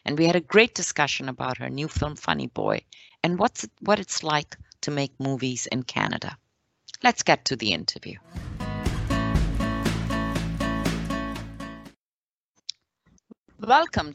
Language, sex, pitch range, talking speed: English, female, 130-160 Hz, 125 wpm